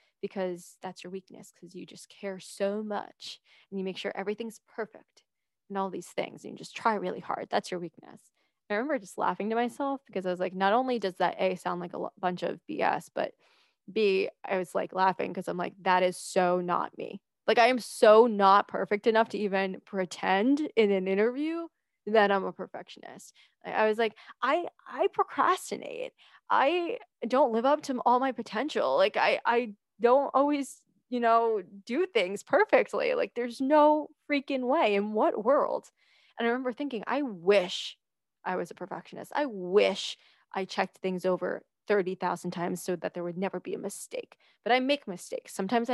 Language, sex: English, female